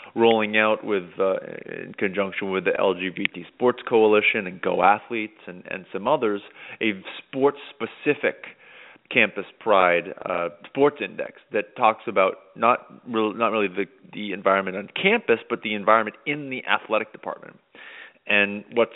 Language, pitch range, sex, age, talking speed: English, 100-115 Hz, male, 30-49, 150 wpm